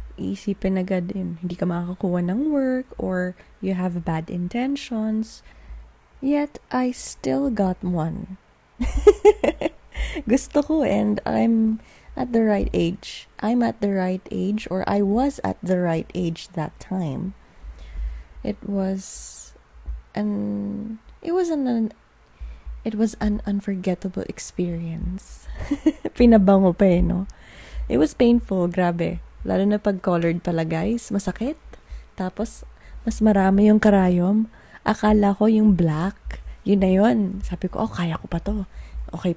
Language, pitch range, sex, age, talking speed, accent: English, 175-220 Hz, female, 20-39, 130 wpm, Filipino